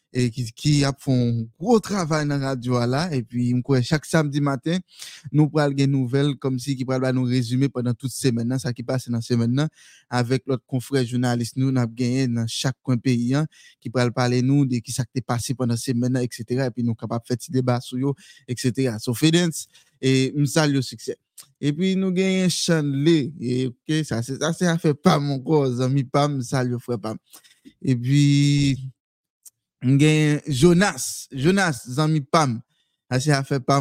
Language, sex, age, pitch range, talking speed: French, male, 20-39, 125-150 Hz, 210 wpm